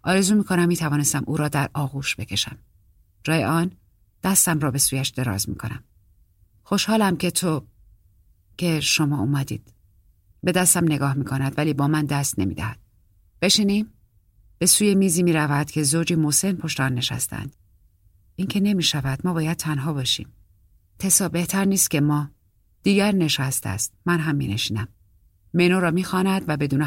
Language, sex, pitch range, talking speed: Persian, female, 100-170 Hz, 155 wpm